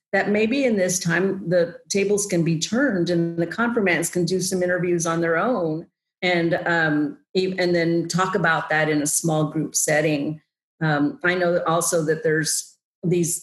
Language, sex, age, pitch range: English, female, 50-69, 160-190 Hz